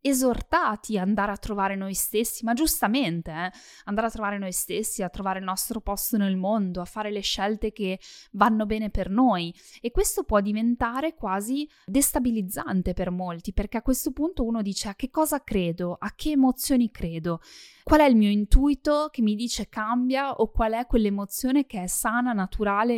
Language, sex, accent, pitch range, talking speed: Italian, female, native, 190-245 Hz, 185 wpm